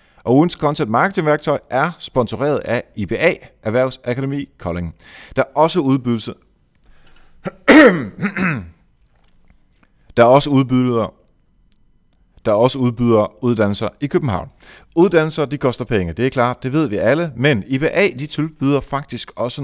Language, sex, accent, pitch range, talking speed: Danish, male, native, 110-145 Hz, 130 wpm